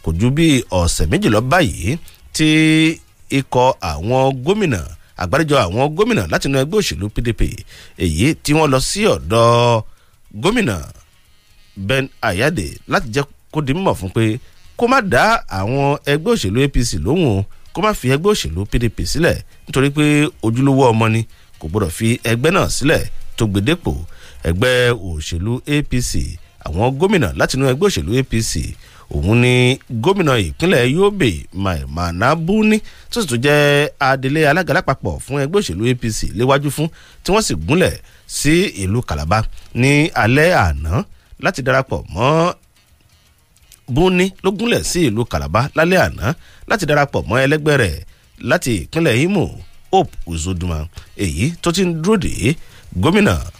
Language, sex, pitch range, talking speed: English, male, 95-145 Hz, 140 wpm